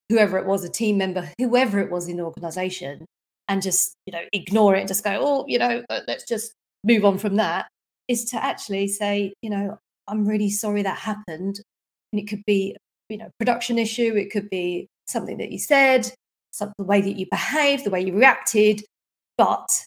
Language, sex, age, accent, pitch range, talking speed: English, female, 40-59, British, 190-235 Hz, 200 wpm